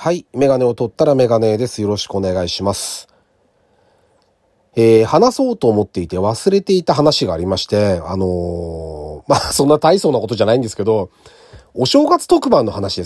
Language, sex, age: Japanese, male, 40-59